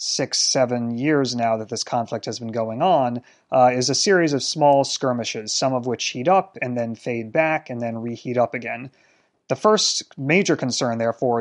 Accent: American